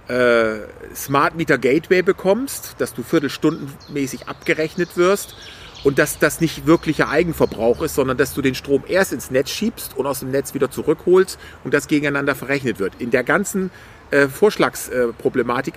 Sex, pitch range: male, 120-155 Hz